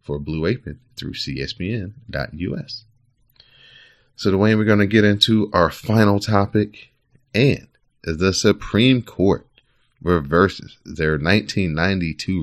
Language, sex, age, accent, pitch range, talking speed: English, male, 30-49, American, 75-100 Hz, 110 wpm